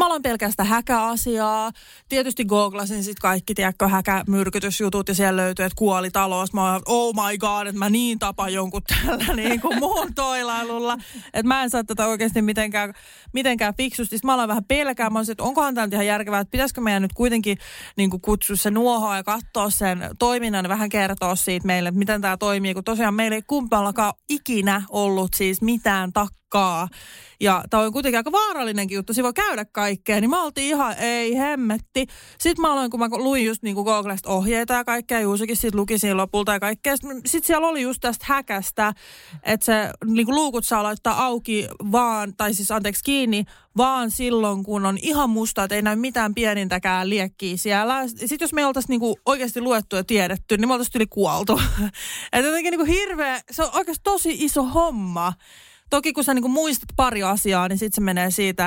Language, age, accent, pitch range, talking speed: Finnish, 20-39, native, 200-255 Hz, 185 wpm